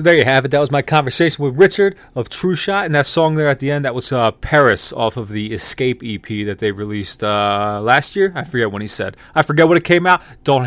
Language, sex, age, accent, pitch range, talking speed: English, male, 30-49, American, 115-140 Hz, 265 wpm